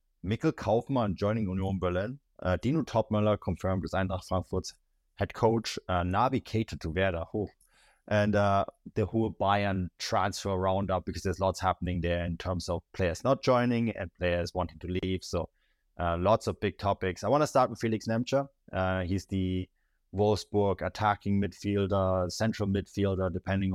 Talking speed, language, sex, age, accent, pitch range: 160 wpm, English, male, 20-39, German, 90-110 Hz